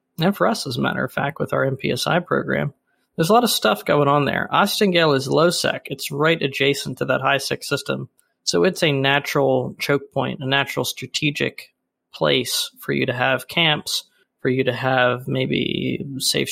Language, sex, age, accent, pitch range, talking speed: English, male, 20-39, American, 135-170 Hz, 185 wpm